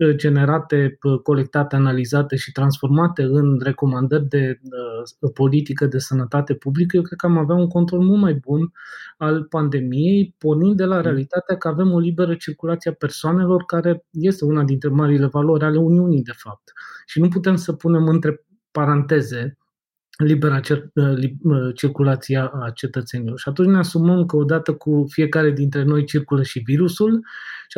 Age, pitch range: 20-39, 140-170 Hz